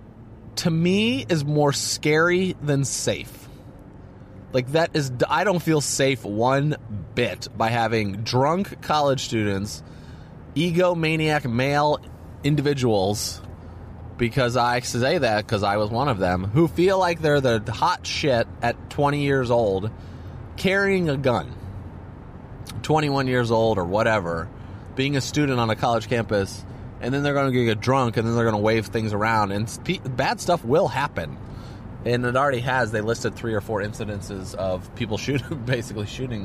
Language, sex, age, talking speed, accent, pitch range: English, male, 30-49, 160 wpm, American, 105-135 Hz